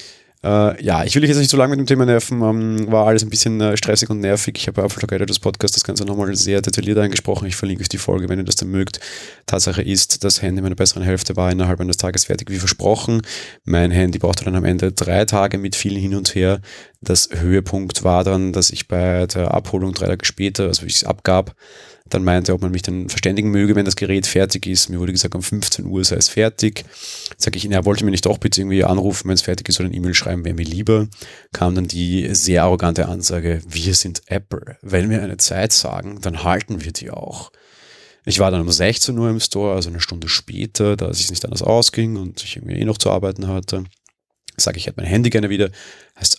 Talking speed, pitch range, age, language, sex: 240 wpm, 90-105 Hz, 30-49, German, male